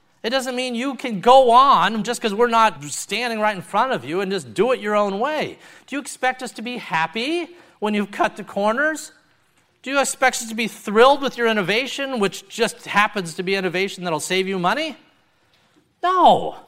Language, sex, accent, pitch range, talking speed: English, male, American, 180-245 Hz, 205 wpm